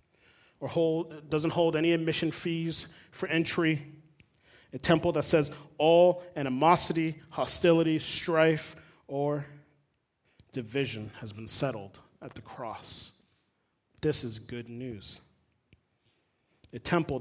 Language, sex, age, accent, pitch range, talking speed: English, male, 30-49, American, 120-155 Hz, 110 wpm